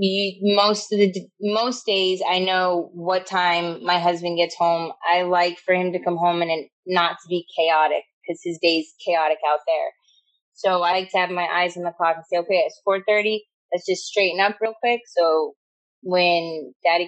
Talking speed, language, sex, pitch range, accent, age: 200 wpm, English, female, 175-210 Hz, American, 20-39